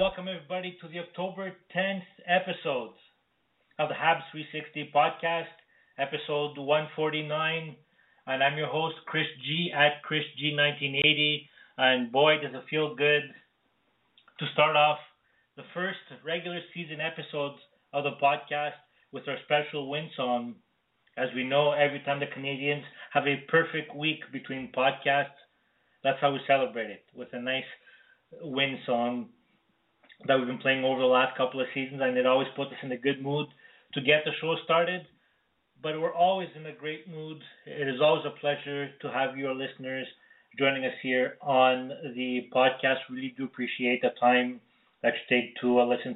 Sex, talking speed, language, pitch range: male, 165 wpm, English, 130-160 Hz